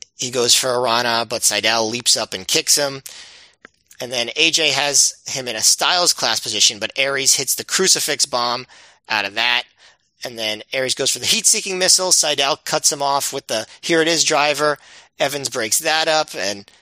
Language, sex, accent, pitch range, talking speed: English, male, American, 130-180 Hz, 180 wpm